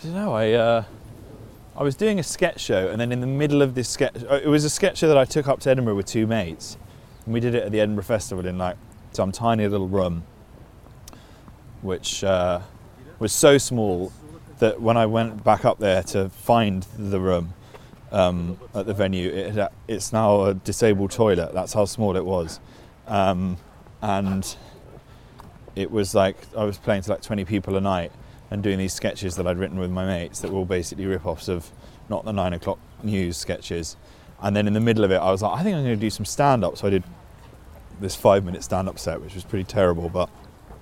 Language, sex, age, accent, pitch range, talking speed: English, male, 30-49, British, 90-110 Hz, 205 wpm